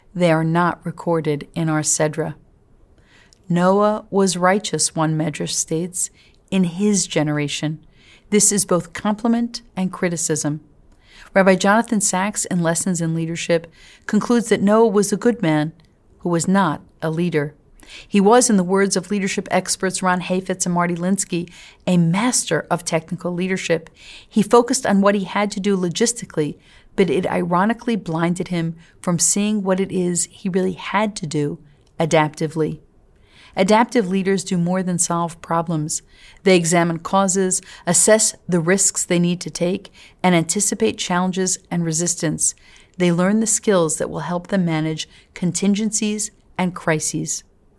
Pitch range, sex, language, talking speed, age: 165-200 Hz, female, English, 150 wpm, 40-59